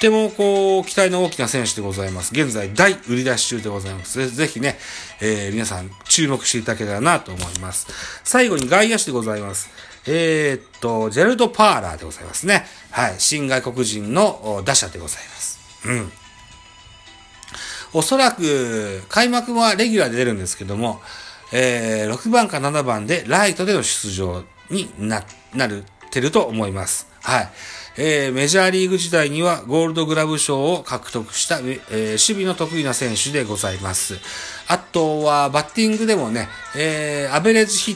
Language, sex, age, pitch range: Japanese, male, 40-59, 110-175 Hz